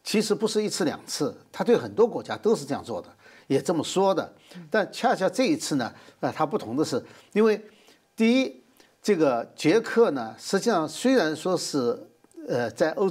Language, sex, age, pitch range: Chinese, male, 60-79, 155-245 Hz